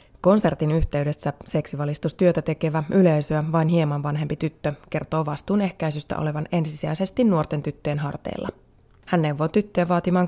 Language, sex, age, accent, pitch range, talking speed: Finnish, female, 20-39, native, 155-180 Hz, 125 wpm